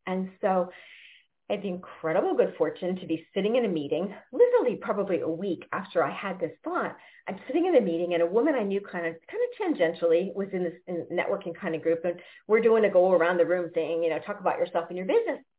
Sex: female